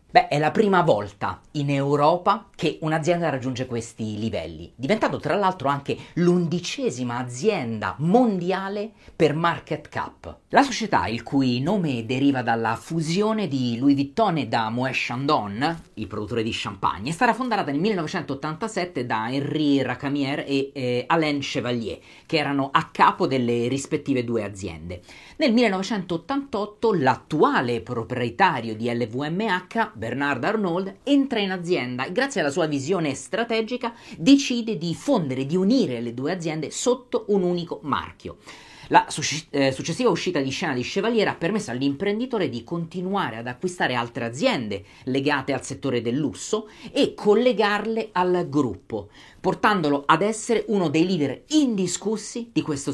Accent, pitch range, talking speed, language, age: native, 130-200 Hz, 140 wpm, Italian, 40-59